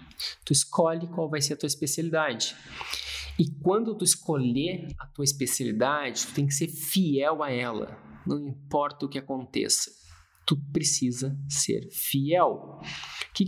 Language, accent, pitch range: Portuguese, Brazilian, 125-155 Hz